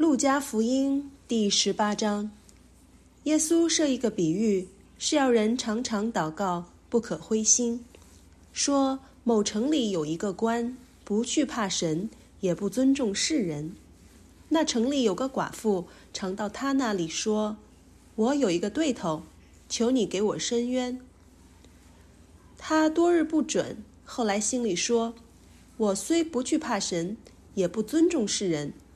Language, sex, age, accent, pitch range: English, female, 30-49, Chinese, 175-265 Hz